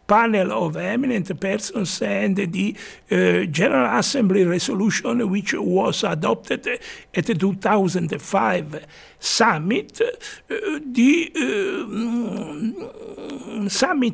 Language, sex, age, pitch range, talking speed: English, male, 60-79, 185-245 Hz, 70 wpm